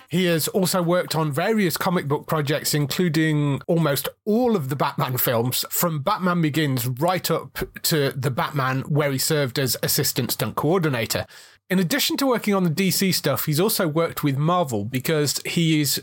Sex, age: male, 30-49